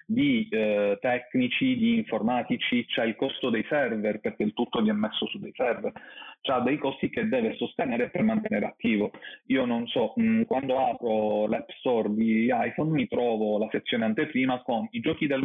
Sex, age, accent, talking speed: male, 30-49, native, 180 wpm